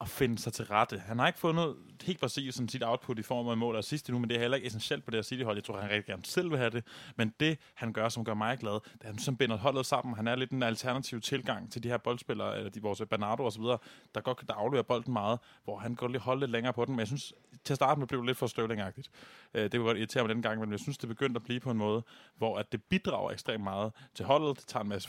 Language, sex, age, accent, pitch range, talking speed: Danish, male, 20-39, native, 110-125 Hz, 310 wpm